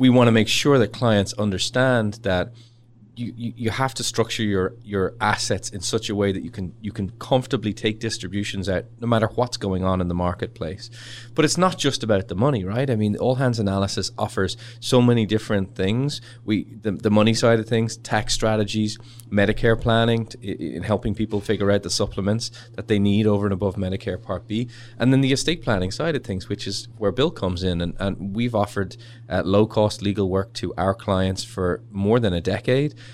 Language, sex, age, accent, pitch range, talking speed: English, male, 20-39, Irish, 95-120 Hz, 210 wpm